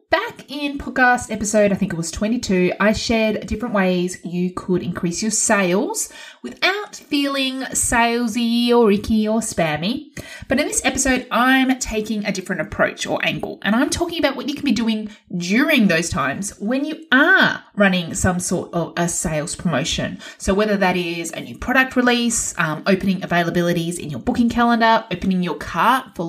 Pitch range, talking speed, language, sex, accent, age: 195-265 Hz, 175 wpm, English, female, Australian, 20-39